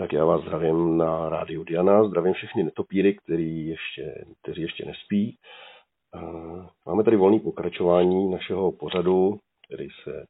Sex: male